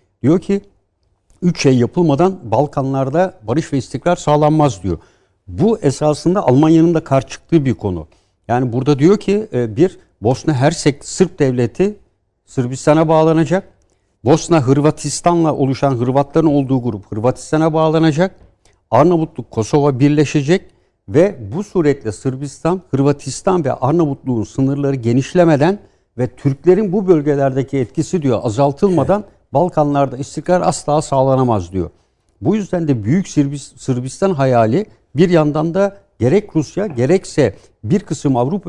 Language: Turkish